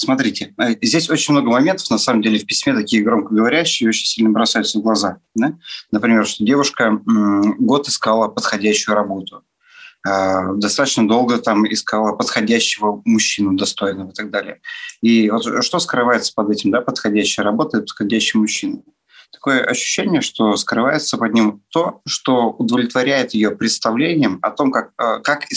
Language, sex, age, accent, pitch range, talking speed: Russian, male, 30-49, native, 105-140 Hz, 140 wpm